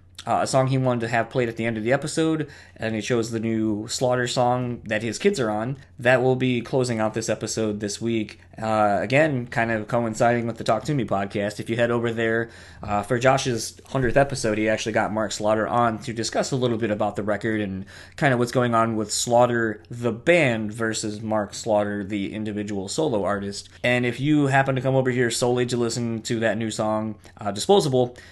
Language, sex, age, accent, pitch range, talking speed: English, male, 20-39, American, 105-125 Hz, 220 wpm